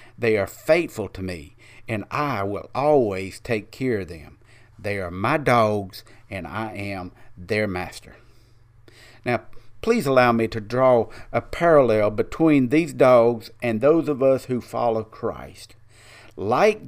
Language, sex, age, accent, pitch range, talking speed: English, male, 50-69, American, 105-135 Hz, 145 wpm